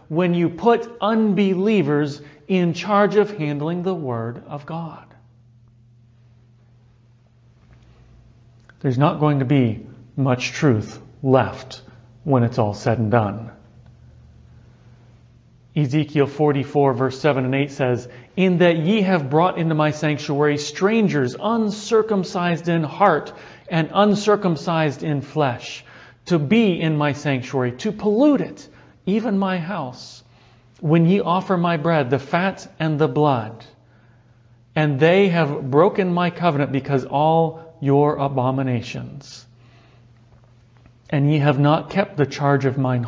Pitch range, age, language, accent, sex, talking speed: 120-160 Hz, 40-59, English, American, male, 125 wpm